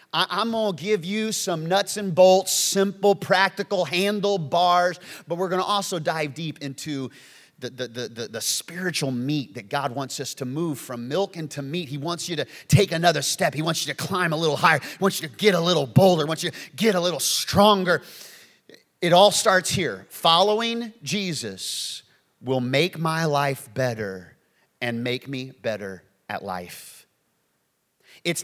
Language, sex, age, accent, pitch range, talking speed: English, male, 30-49, American, 155-210 Hz, 180 wpm